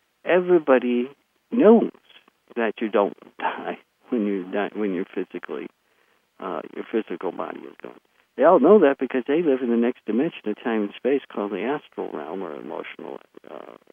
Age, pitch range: 60-79, 105-135 Hz